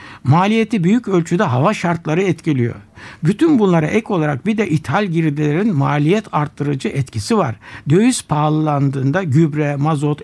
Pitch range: 145-210 Hz